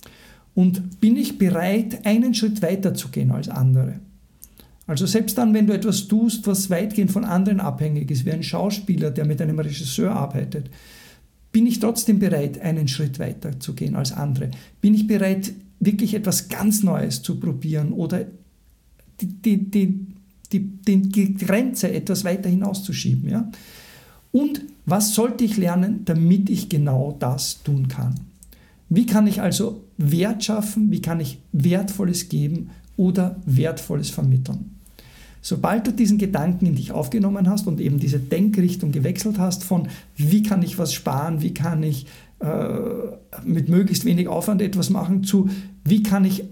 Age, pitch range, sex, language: 60-79, 160-205 Hz, male, German